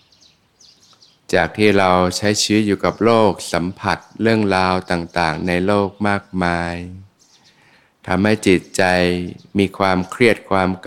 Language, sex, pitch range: Thai, male, 85-100 Hz